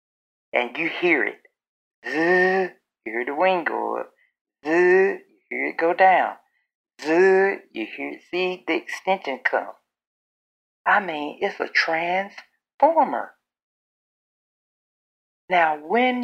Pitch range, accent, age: 190-245 Hz, American, 60-79